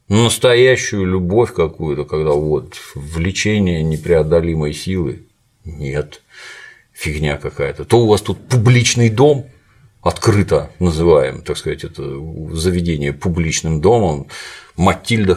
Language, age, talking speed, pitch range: Russian, 50-69, 105 wpm, 80-115 Hz